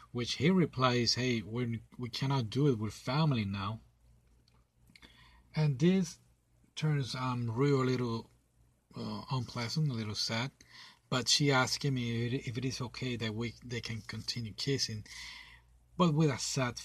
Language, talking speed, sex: English, 145 wpm, male